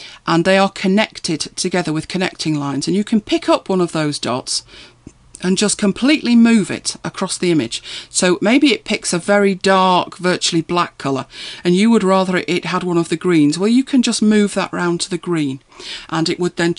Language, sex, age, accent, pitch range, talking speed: English, female, 40-59, British, 170-210 Hz, 210 wpm